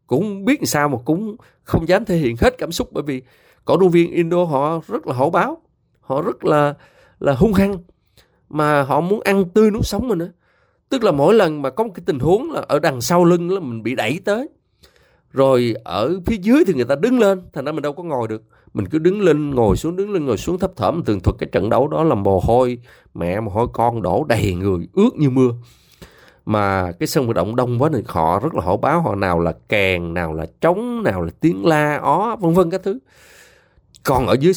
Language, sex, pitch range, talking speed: Vietnamese, male, 105-170 Hz, 240 wpm